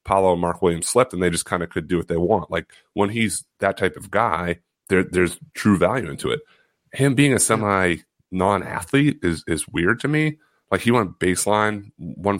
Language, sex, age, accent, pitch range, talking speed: English, male, 30-49, American, 85-110 Hz, 205 wpm